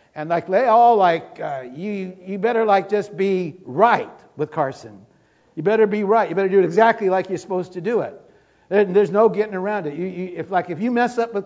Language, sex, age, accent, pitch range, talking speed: English, male, 60-79, American, 155-195 Hz, 235 wpm